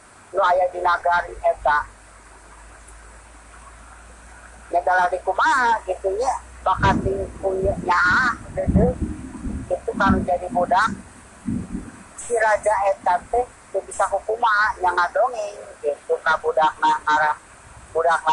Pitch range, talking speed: 170-215 Hz, 110 wpm